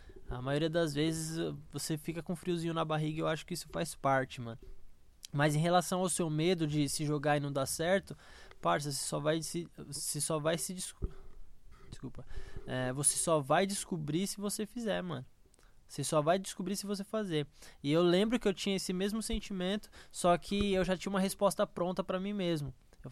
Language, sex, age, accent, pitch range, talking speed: Portuguese, male, 20-39, Brazilian, 150-185 Hz, 205 wpm